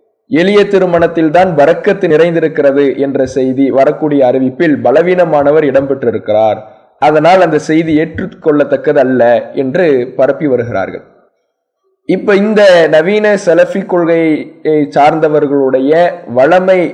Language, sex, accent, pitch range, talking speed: English, male, Indian, 150-190 Hz, 95 wpm